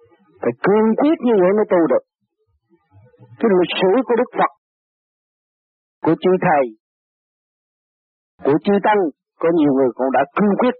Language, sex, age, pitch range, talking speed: Vietnamese, male, 50-69, 145-230 Hz, 150 wpm